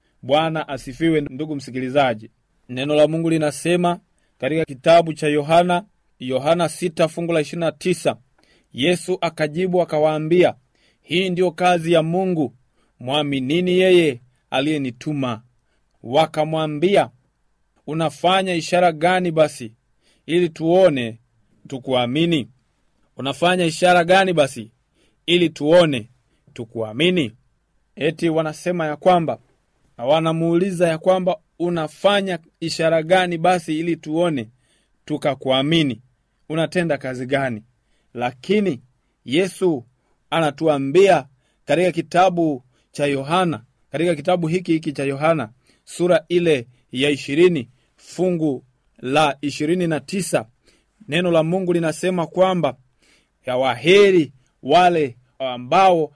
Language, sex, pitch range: Swahili, male, 130-175 Hz